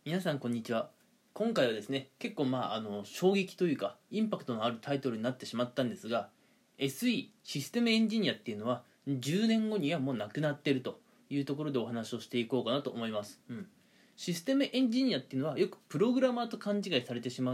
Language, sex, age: Japanese, male, 20-39